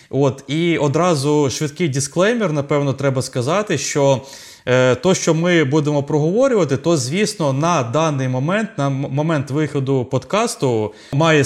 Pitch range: 130-160 Hz